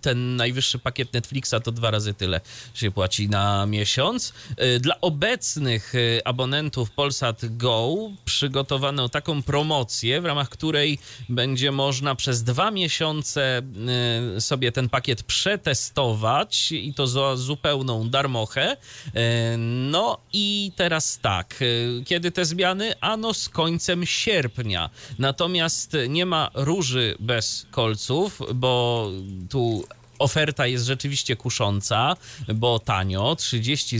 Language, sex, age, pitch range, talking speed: Polish, male, 30-49, 115-150 Hz, 110 wpm